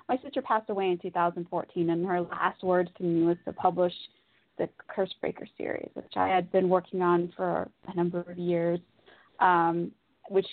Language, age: English, 20-39